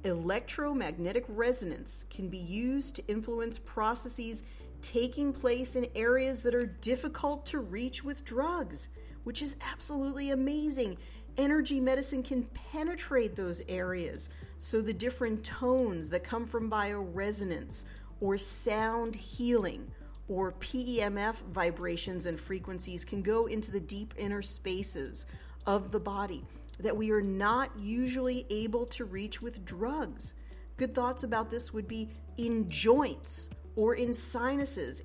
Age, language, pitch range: 40-59, English, 195-245 Hz